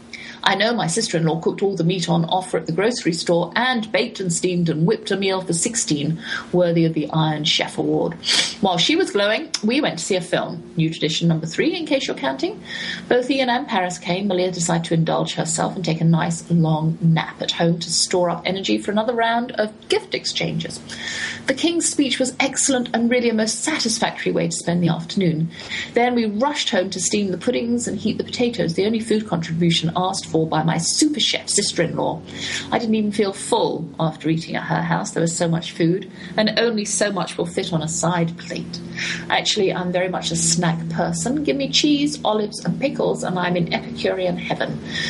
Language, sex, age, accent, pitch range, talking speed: English, female, 30-49, British, 170-240 Hz, 210 wpm